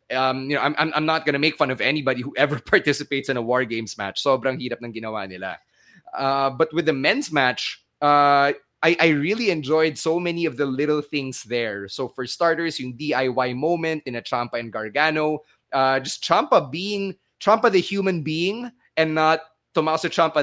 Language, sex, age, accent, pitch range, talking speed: English, male, 20-39, Filipino, 135-160 Hz, 190 wpm